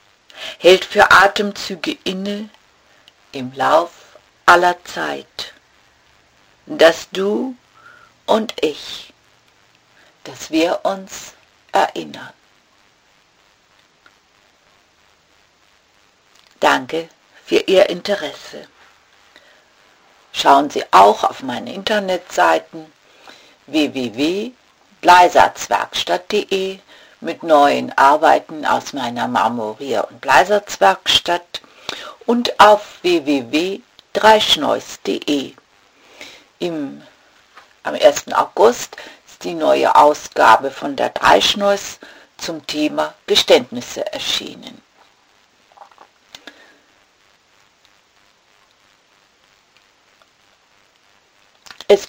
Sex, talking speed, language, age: female, 60 wpm, English, 60-79